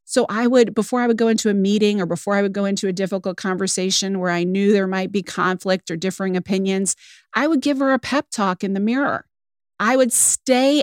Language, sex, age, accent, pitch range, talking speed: English, female, 40-59, American, 180-230 Hz, 235 wpm